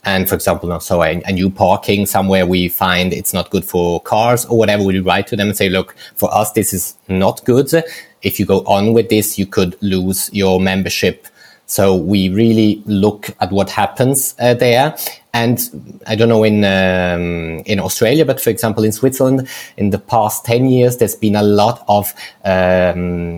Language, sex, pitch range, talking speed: English, male, 95-115 Hz, 195 wpm